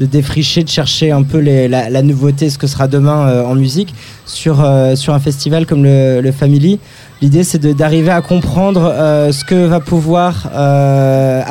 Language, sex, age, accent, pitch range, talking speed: French, male, 20-39, French, 140-175 Hz, 200 wpm